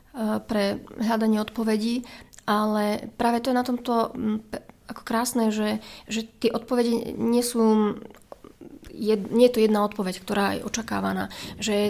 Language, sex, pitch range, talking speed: Slovak, female, 210-230 Hz, 125 wpm